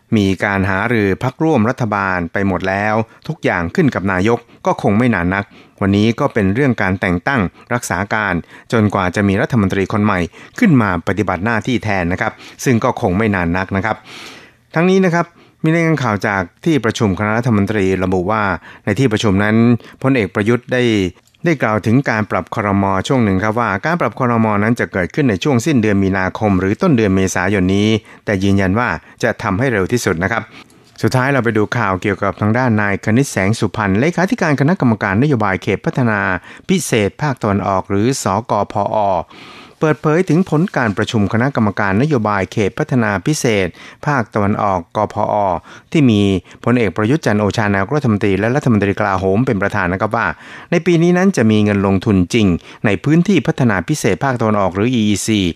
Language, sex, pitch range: Thai, male, 100-125 Hz